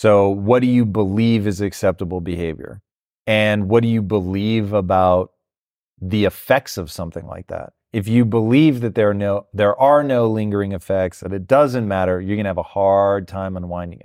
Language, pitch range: English, 95-115 Hz